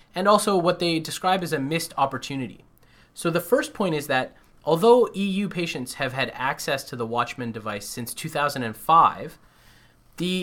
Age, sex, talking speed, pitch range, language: 20-39, male, 160 wpm, 130-175 Hz, English